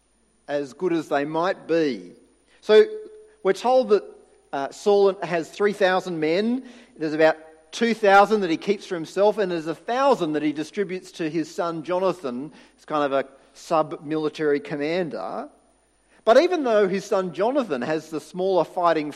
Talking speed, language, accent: 165 wpm, English, Australian